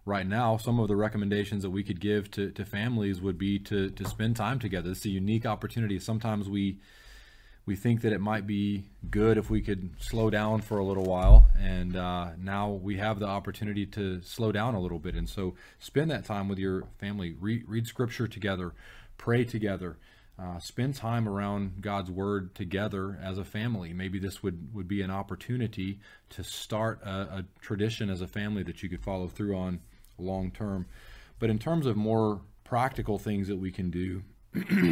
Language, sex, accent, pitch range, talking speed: English, male, American, 95-110 Hz, 195 wpm